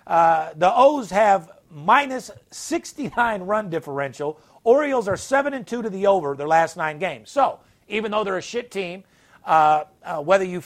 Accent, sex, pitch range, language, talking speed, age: American, male, 155-225 Hz, English, 175 wpm, 50-69